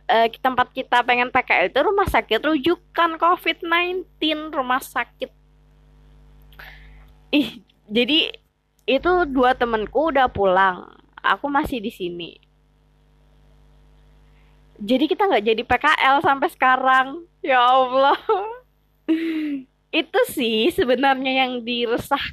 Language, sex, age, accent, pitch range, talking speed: Indonesian, female, 20-39, native, 225-320 Hz, 95 wpm